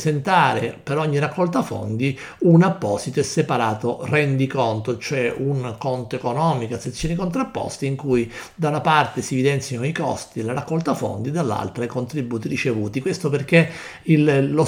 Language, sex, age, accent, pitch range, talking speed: Italian, male, 50-69, native, 120-155 Hz, 145 wpm